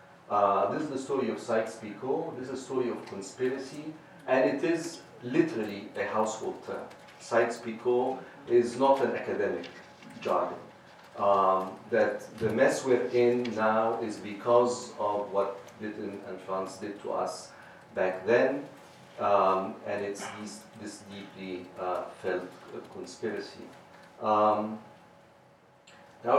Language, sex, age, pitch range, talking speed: English, male, 50-69, 105-125 Hz, 125 wpm